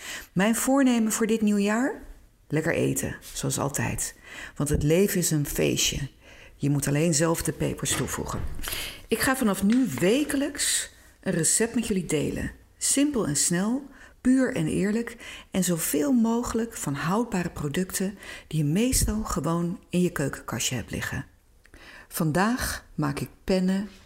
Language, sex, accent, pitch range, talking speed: Dutch, female, Dutch, 150-215 Hz, 140 wpm